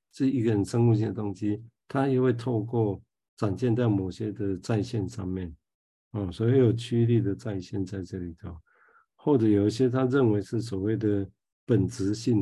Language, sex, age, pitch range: Chinese, male, 50-69, 100-120 Hz